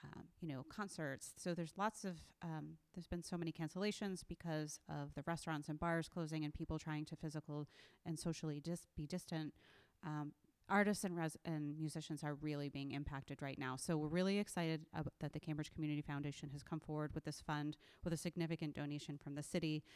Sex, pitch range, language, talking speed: female, 150-175 Hz, English, 190 wpm